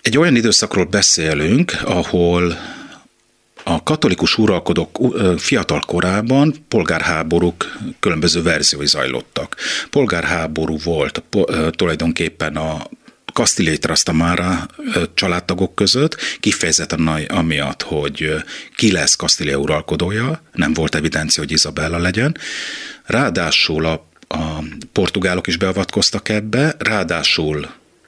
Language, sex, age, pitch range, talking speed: Hungarian, male, 30-49, 80-90 Hz, 90 wpm